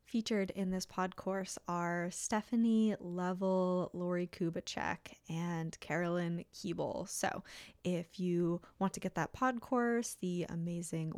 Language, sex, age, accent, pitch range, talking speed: English, female, 10-29, American, 170-200 Hz, 130 wpm